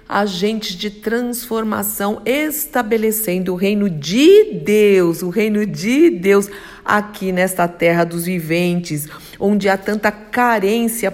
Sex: female